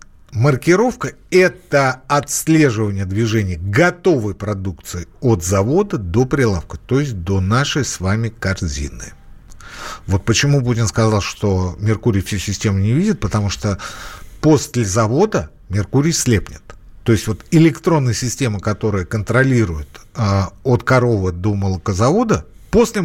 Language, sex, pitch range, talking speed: Russian, male, 100-155 Hz, 120 wpm